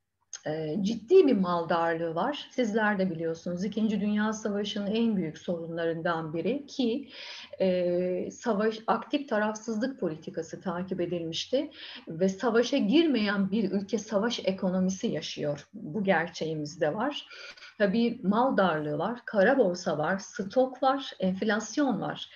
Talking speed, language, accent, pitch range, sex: 120 wpm, Turkish, native, 180-245 Hz, female